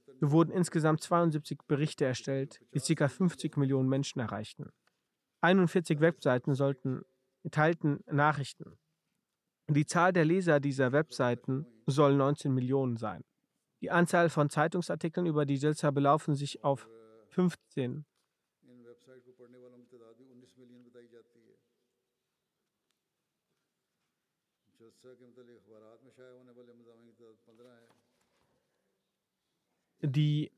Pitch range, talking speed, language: 125-155 Hz, 75 wpm, German